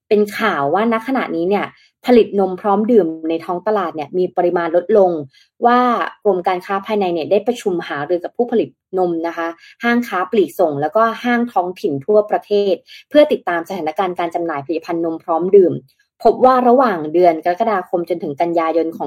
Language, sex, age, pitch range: Thai, female, 20-39, 170-225 Hz